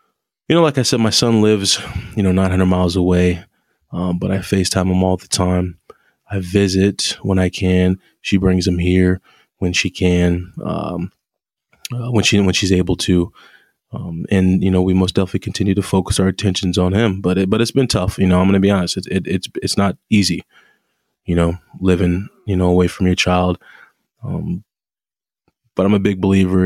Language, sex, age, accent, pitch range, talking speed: English, male, 20-39, American, 90-95 Hz, 200 wpm